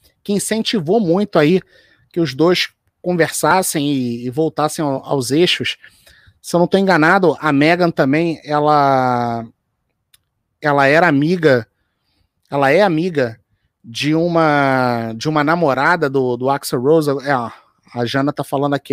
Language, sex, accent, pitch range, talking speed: Portuguese, male, Brazilian, 130-185 Hz, 135 wpm